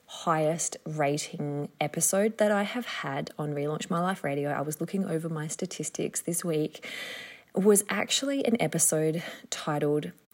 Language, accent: English, Australian